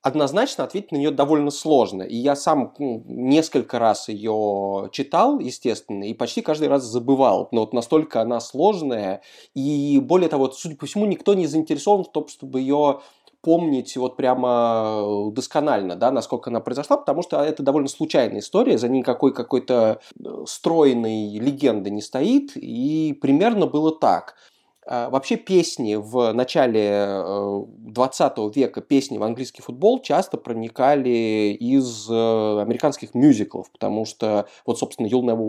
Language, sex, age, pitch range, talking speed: Russian, male, 20-39, 110-145 Hz, 145 wpm